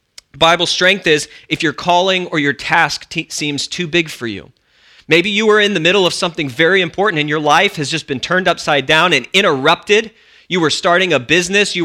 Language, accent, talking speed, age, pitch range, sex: English, American, 215 wpm, 40-59, 140-185 Hz, male